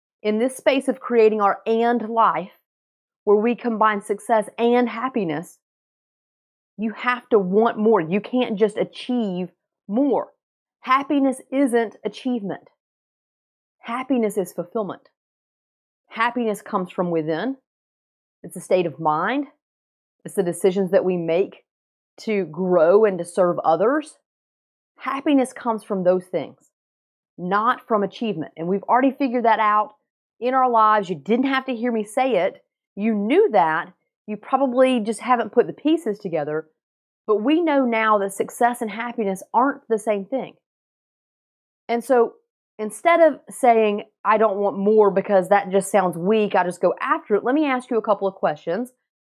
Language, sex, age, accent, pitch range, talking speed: English, female, 30-49, American, 195-245 Hz, 155 wpm